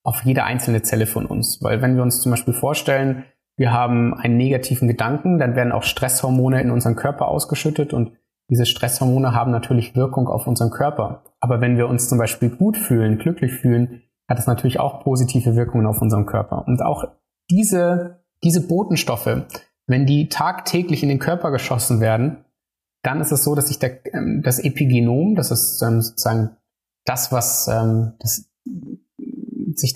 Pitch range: 120-155 Hz